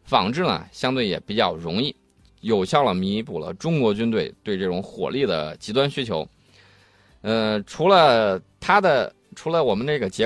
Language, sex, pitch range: Chinese, male, 105-155 Hz